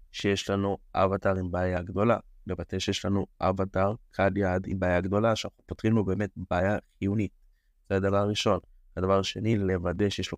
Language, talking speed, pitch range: Hebrew, 170 wpm, 90-110 Hz